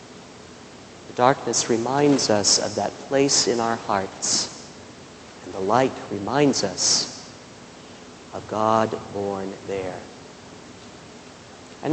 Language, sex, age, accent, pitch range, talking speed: English, male, 40-59, American, 120-160 Hz, 100 wpm